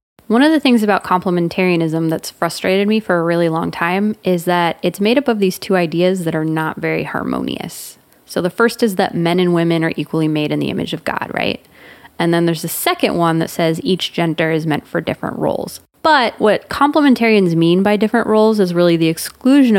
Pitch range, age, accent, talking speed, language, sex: 165-205 Hz, 20-39, American, 215 wpm, English, female